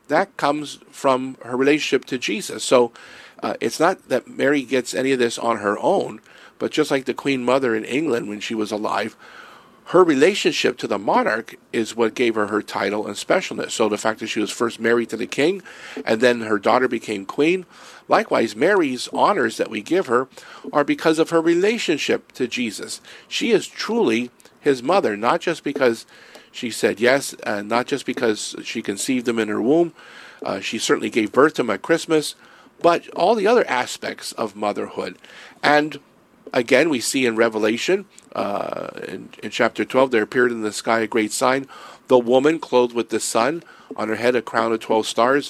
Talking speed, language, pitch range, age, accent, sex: 195 wpm, English, 110-140 Hz, 50-69, American, male